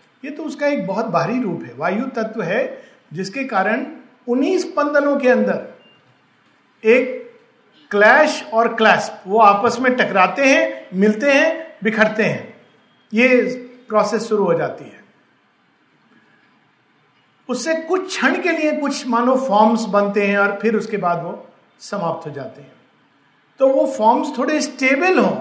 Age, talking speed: 50-69, 145 wpm